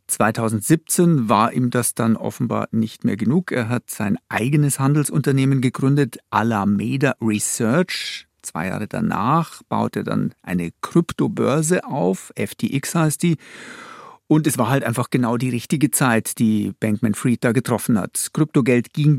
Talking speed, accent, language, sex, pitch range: 140 wpm, German, German, male, 115-145 Hz